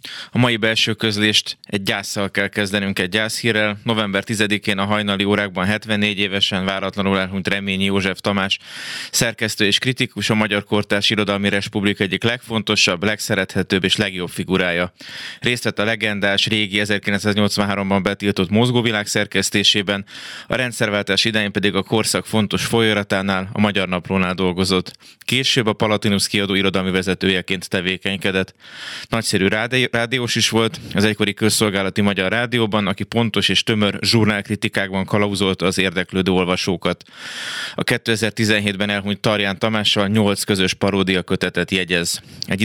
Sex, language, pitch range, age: male, Hungarian, 95-110 Hz, 20-39